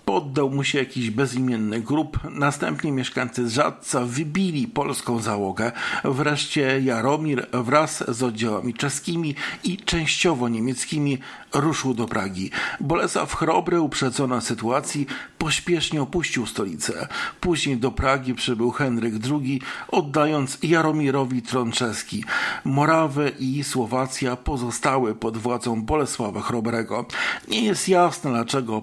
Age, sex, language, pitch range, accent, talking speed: 50-69, male, Polish, 125-155 Hz, native, 110 wpm